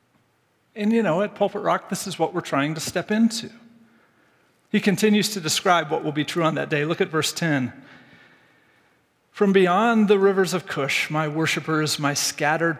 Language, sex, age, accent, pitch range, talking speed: English, male, 40-59, American, 155-205 Hz, 185 wpm